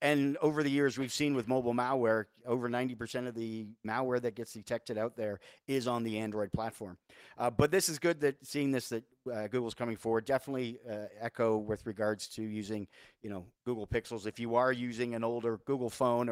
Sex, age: male, 40-59